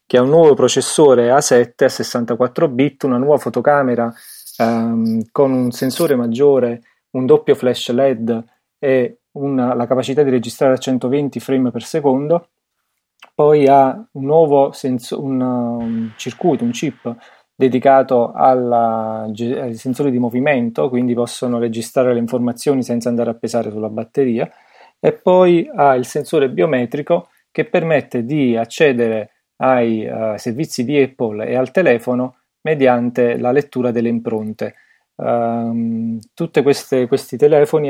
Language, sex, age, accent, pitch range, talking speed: Italian, male, 30-49, native, 120-140 Hz, 130 wpm